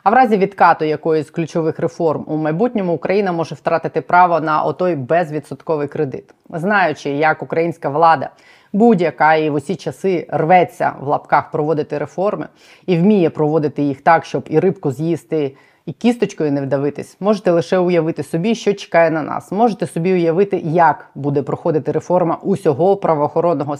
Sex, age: female, 20-39